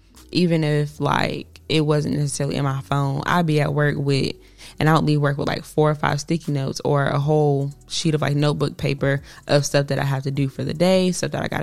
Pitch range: 140-155 Hz